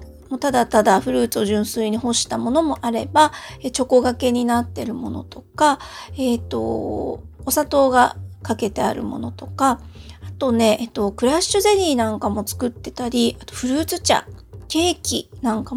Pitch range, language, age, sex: 210-290 Hz, Japanese, 40-59, female